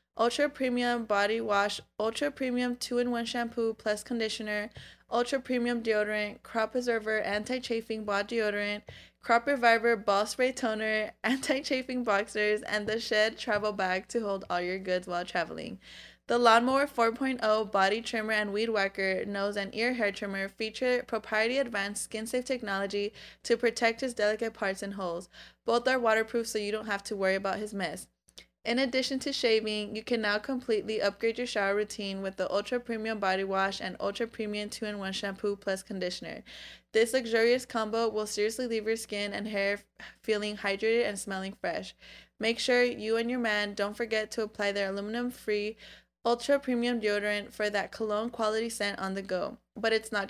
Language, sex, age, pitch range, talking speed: English, female, 20-39, 205-235 Hz, 170 wpm